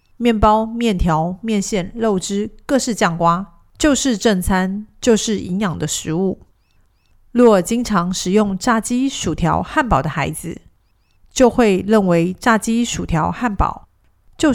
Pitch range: 170-225 Hz